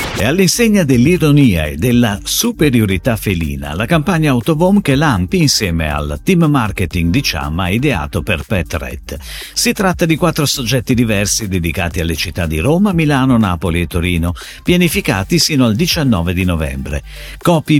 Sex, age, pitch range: male, 50-69, 90-150 Hz